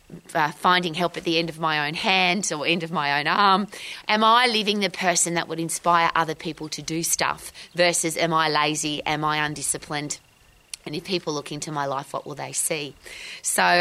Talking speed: 210 wpm